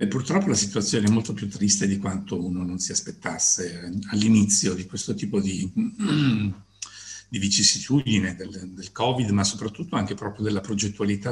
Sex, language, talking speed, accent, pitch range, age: male, Italian, 155 wpm, native, 100-115 Hz, 50-69